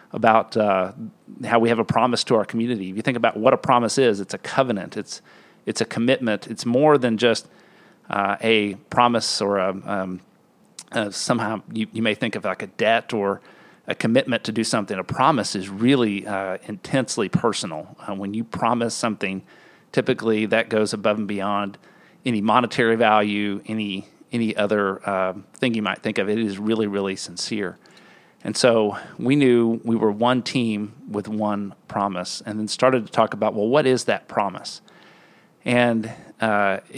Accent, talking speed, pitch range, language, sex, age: American, 180 wpm, 105-120 Hz, English, male, 40-59